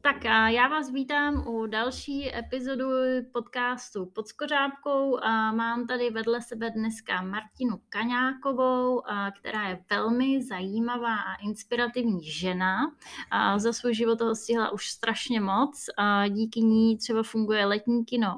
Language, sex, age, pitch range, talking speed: Czech, female, 20-39, 205-245 Hz, 135 wpm